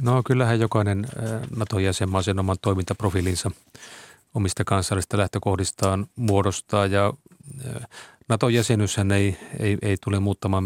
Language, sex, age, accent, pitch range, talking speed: Finnish, male, 30-49, native, 95-110 Hz, 95 wpm